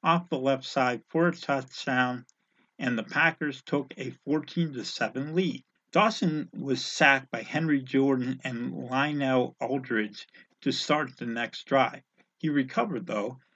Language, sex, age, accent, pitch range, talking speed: English, male, 50-69, American, 130-165 Hz, 135 wpm